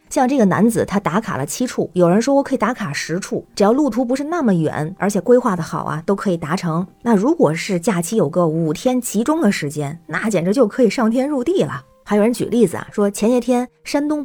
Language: Chinese